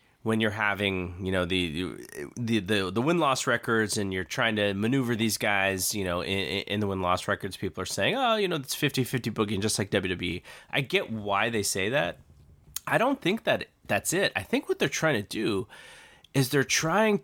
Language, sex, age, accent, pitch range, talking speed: English, male, 30-49, American, 100-135 Hz, 210 wpm